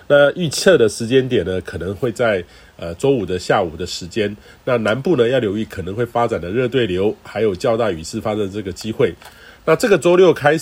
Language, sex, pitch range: Chinese, male, 105-140 Hz